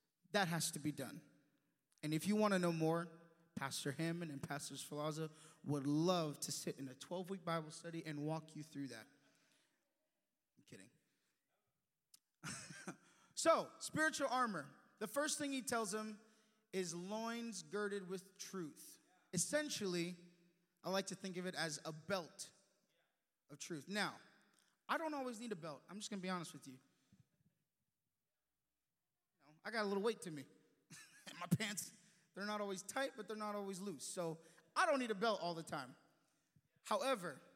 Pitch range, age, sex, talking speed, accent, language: 155-210 Hz, 20-39, male, 165 wpm, American, English